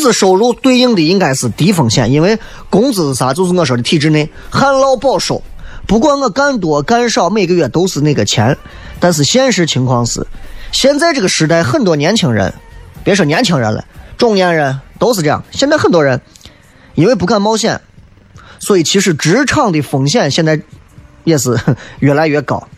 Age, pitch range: 20-39, 140-195 Hz